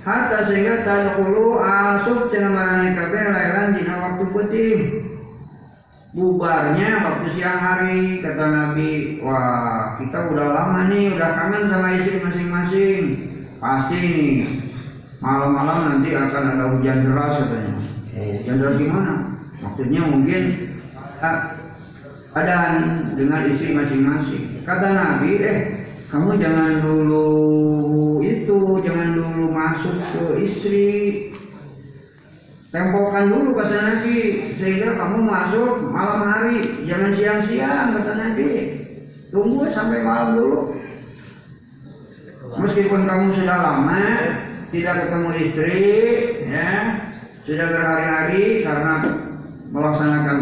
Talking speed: 100 wpm